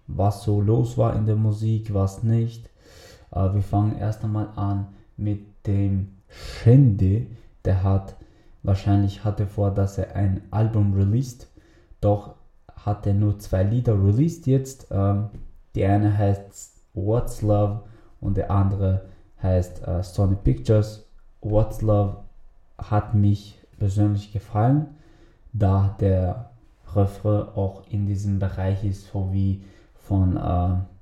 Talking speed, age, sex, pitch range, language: 130 wpm, 20-39, male, 100-115 Hz, German